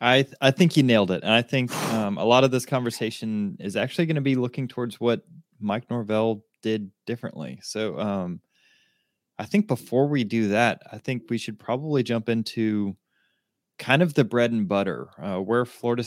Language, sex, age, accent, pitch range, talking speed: English, male, 20-39, American, 100-125 Hz, 195 wpm